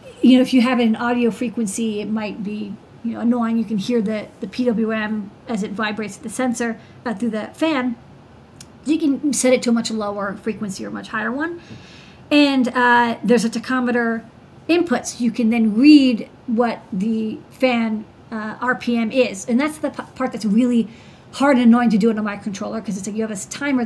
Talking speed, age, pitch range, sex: 210 wpm, 40-59, 220-255 Hz, female